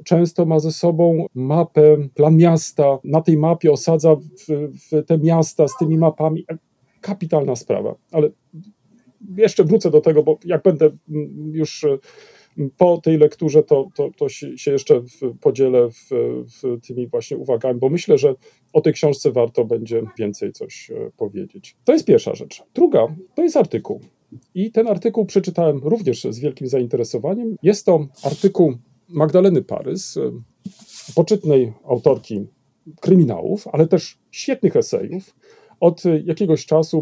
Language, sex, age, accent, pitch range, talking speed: Polish, male, 40-59, native, 150-205 Hz, 130 wpm